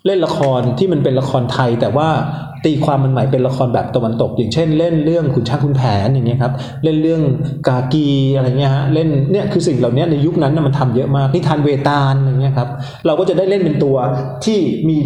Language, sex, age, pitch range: Thai, male, 20-39, 130-160 Hz